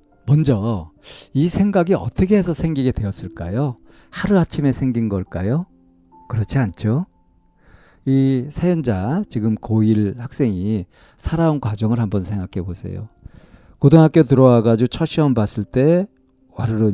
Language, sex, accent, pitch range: Korean, male, native, 105-140 Hz